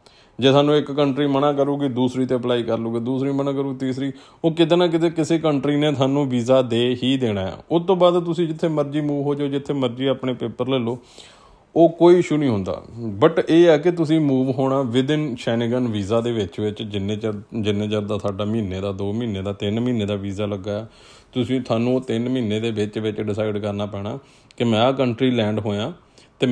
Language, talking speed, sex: Punjabi, 190 wpm, male